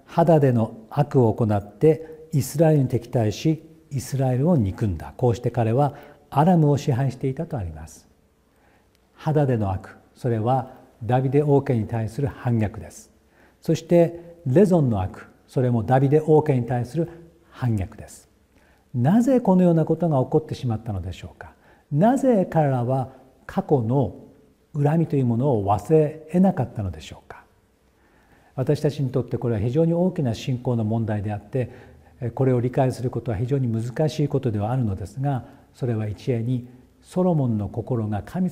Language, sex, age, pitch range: Japanese, male, 50-69, 115-155 Hz